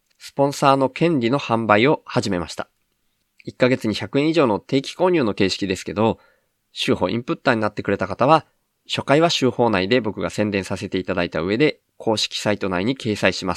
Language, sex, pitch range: Japanese, male, 95-130 Hz